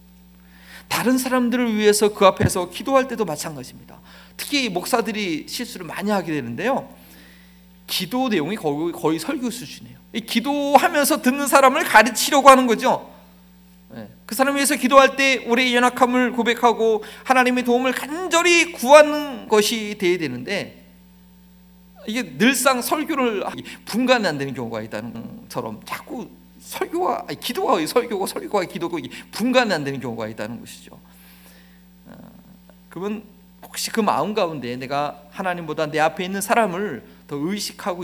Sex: male